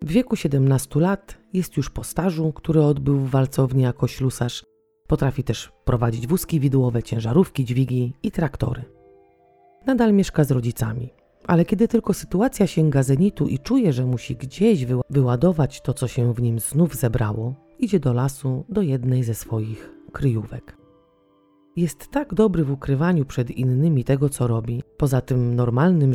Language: Polish